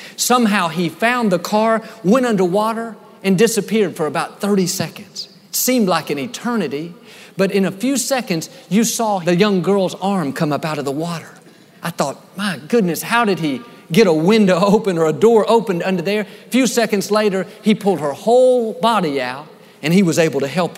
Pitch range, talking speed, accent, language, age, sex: 170-225 Hz, 195 wpm, American, English, 50-69, male